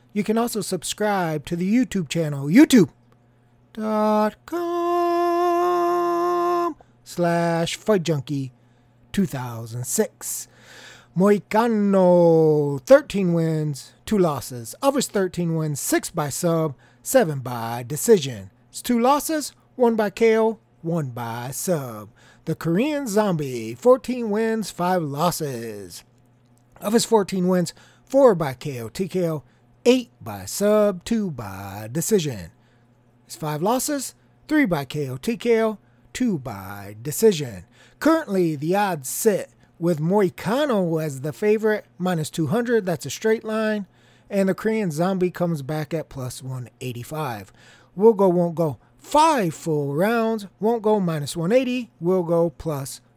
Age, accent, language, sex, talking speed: 30-49, American, English, male, 115 wpm